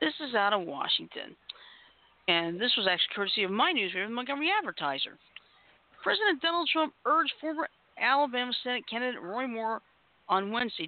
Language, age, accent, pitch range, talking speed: English, 50-69, American, 185-265 Hz, 155 wpm